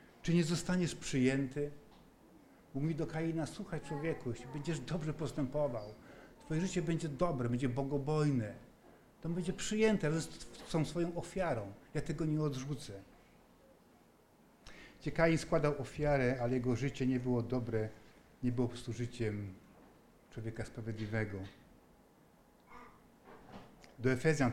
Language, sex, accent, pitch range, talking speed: Polish, male, native, 125-160 Hz, 115 wpm